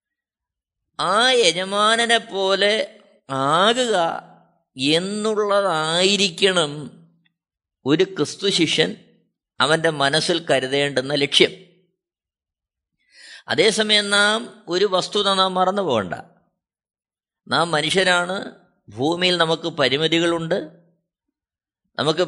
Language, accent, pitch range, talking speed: Malayalam, native, 160-205 Hz, 65 wpm